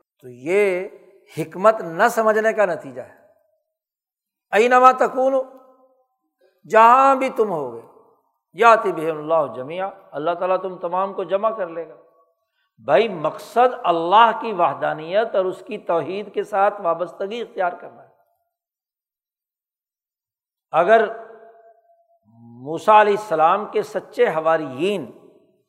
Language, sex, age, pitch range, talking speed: Urdu, male, 60-79, 175-235 Hz, 115 wpm